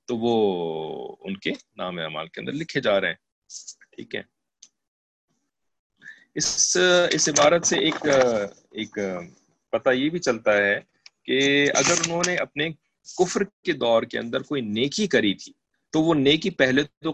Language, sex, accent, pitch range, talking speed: English, male, Indian, 135-195 Hz, 145 wpm